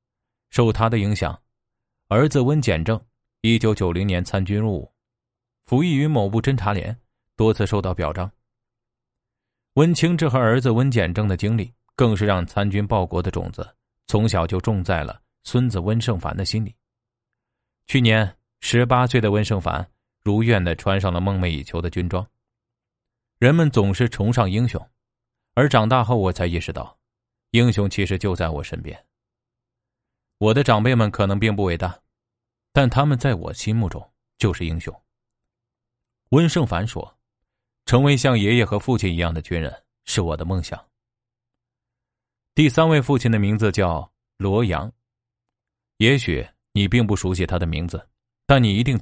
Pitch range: 100-120 Hz